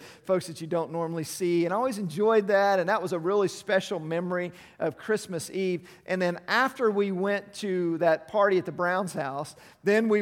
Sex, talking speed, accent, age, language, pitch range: male, 205 wpm, American, 50-69, English, 170-205 Hz